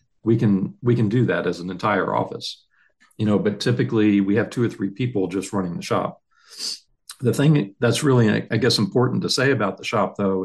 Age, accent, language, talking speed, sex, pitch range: 50-69, American, English, 215 wpm, male, 100-120 Hz